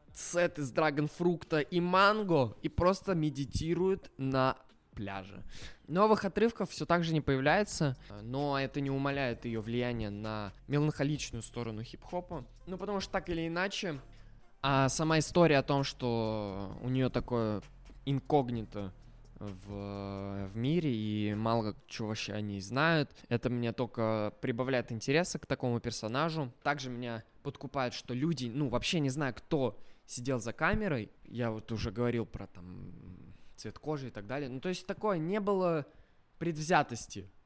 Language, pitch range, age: Russian, 115-160 Hz, 20-39